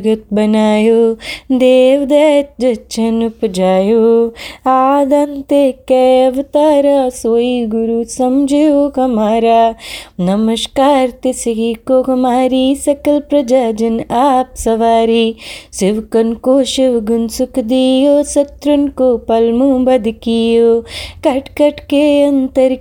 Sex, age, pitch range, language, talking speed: female, 20-39, 235-295 Hz, Punjabi, 95 wpm